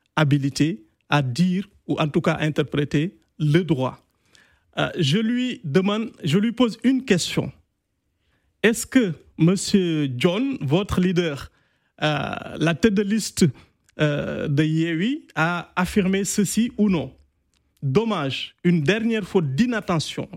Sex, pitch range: male, 160-210 Hz